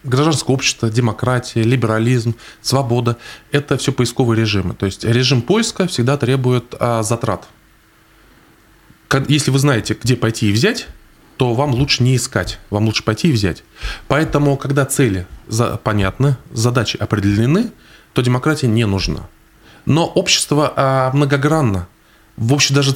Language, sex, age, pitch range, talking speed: Russian, male, 20-39, 110-135 Hz, 130 wpm